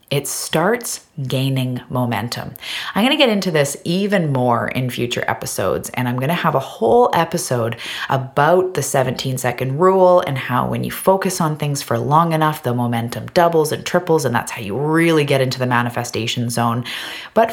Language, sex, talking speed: English, female, 180 wpm